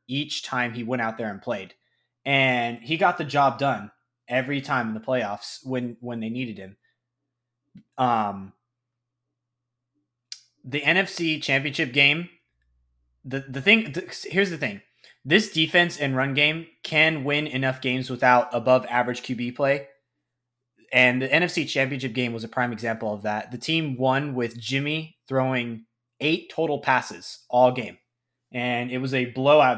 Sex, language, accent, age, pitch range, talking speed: male, English, American, 20-39, 120-145 Hz, 155 wpm